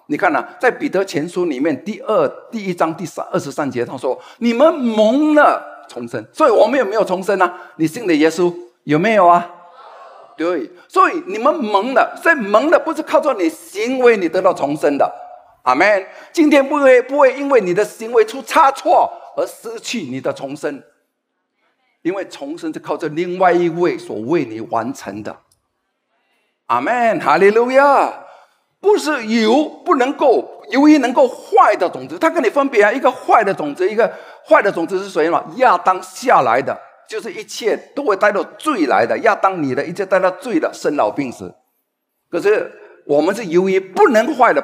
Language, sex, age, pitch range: Chinese, male, 50-69, 195-325 Hz